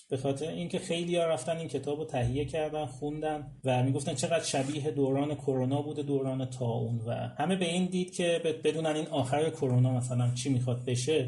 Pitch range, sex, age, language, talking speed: 125-155 Hz, male, 30-49, Persian, 180 wpm